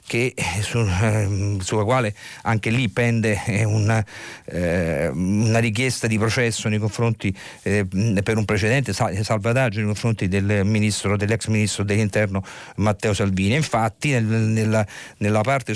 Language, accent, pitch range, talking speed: Italian, native, 100-120 Hz, 135 wpm